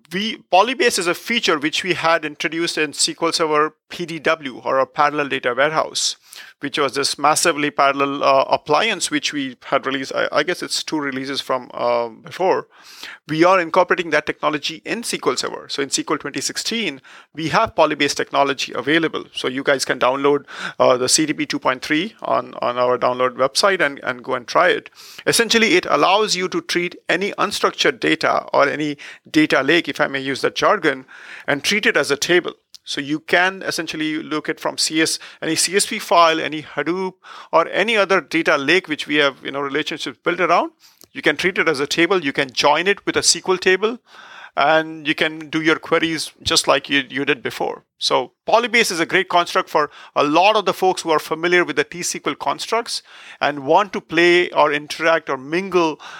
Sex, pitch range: male, 145-185 Hz